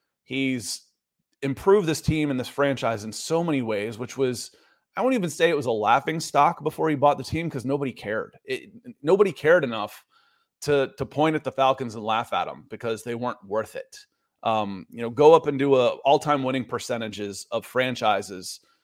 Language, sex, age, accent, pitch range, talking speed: English, male, 30-49, American, 120-150 Hz, 200 wpm